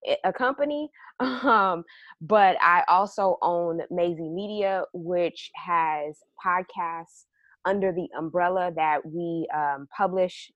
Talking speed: 110 wpm